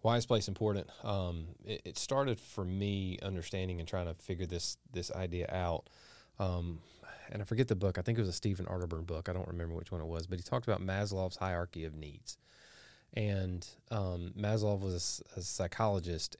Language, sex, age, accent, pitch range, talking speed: English, male, 30-49, American, 85-105 Hz, 200 wpm